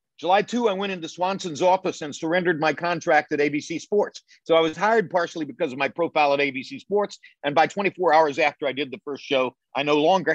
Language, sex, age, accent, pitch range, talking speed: English, male, 50-69, American, 135-175 Hz, 225 wpm